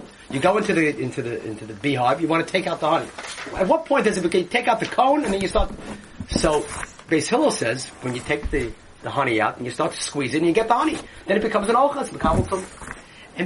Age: 30-49